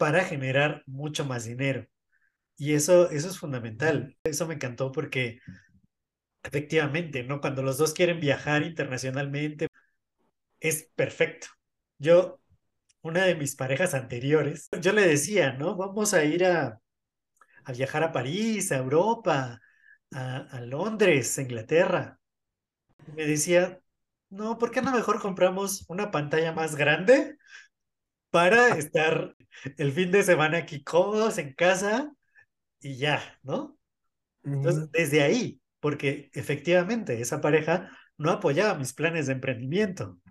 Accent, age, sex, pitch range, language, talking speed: Mexican, 30-49, male, 135-180 Hz, Spanish, 130 wpm